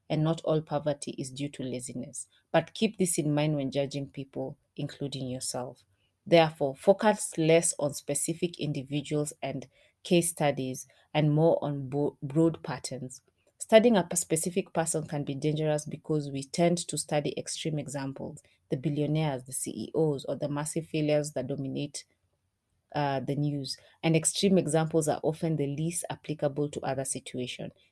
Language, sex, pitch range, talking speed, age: English, female, 140-165 Hz, 155 wpm, 30-49